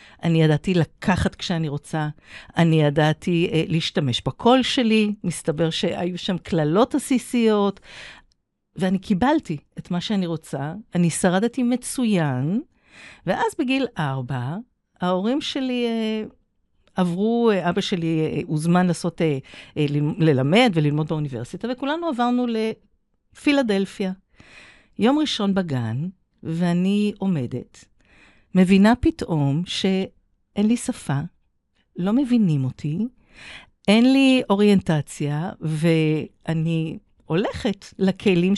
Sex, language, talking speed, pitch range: female, Hebrew, 100 wpm, 155-220 Hz